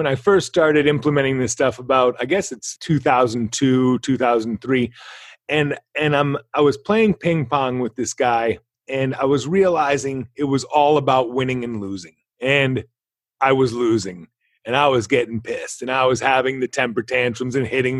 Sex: male